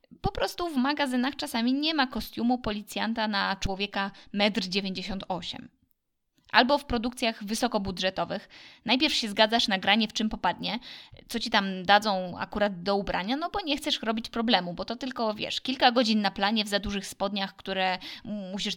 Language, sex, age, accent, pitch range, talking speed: Polish, female, 20-39, native, 200-250 Hz, 165 wpm